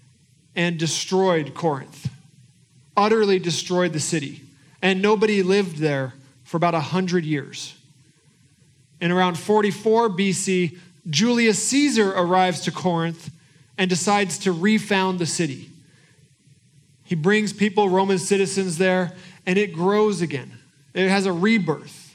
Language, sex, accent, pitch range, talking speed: English, male, American, 155-200 Hz, 120 wpm